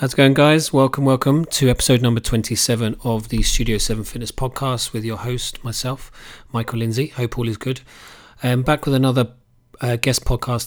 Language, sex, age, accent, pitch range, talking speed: English, male, 30-49, British, 110-125 Hz, 185 wpm